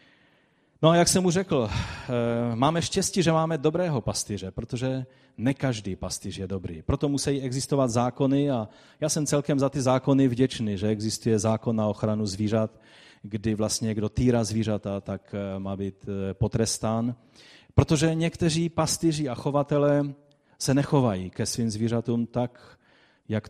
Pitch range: 105-135 Hz